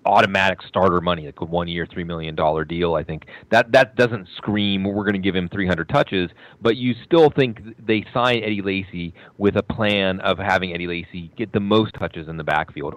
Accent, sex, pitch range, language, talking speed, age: American, male, 90-115 Hz, English, 205 wpm, 30-49